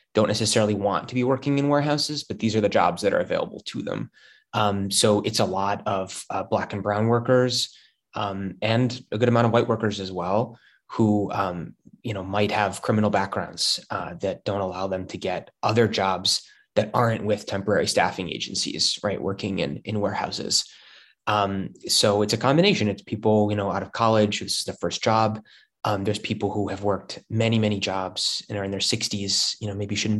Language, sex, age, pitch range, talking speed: English, male, 20-39, 95-110 Hz, 200 wpm